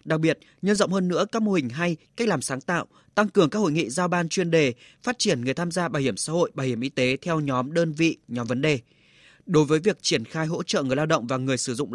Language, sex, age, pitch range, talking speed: Vietnamese, male, 20-39, 140-180 Hz, 285 wpm